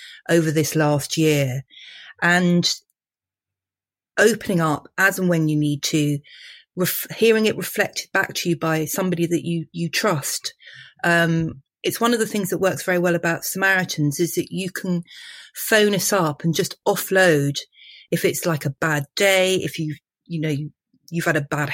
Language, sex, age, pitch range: English, female, 40-59, 150-185 Hz